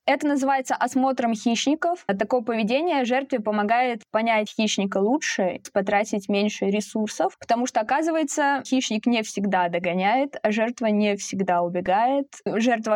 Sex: female